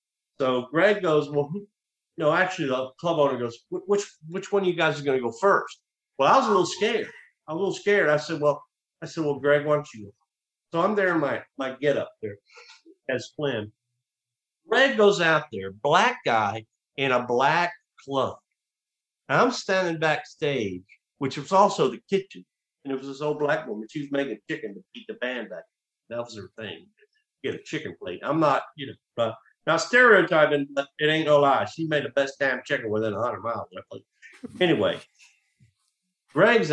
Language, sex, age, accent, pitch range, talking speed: English, male, 50-69, American, 120-180 Hz, 195 wpm